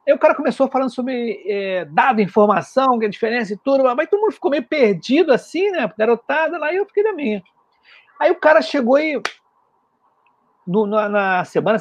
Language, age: Portuguese, 50-69